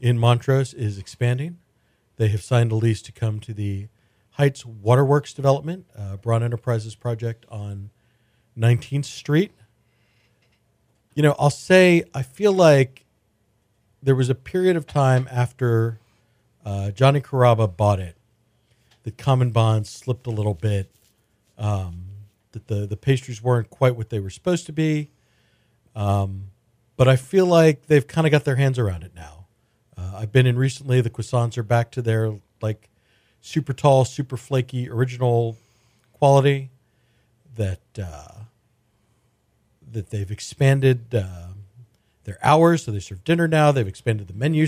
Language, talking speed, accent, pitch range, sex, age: English, 150 wpm, American, 110-130 Hz, male, 40-59